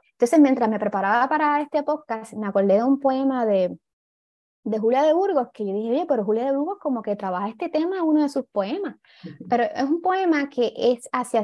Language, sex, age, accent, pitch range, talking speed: Spanish, female, 20-39, American, 200-255 Hz, 215 wpm